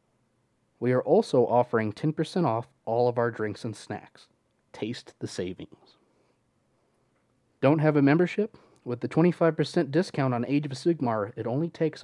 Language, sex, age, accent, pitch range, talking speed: English, male, 30-49, American, 115-145 Hz, 150 wpm